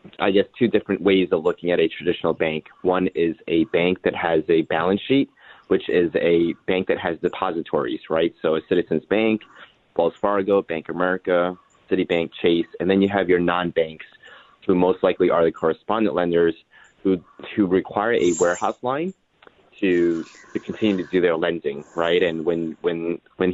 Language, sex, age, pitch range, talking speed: English, male, 20-39, 85-95 Hz, 180 wpm